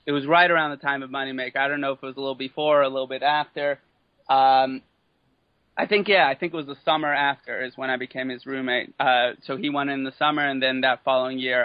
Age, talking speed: 30-49, 265 wpm